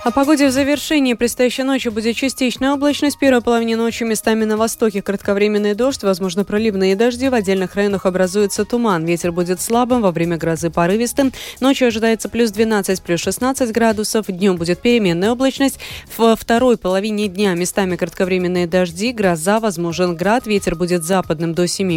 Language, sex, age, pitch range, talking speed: Russian, female, 20-39, 175-230 Hz, 160 wpm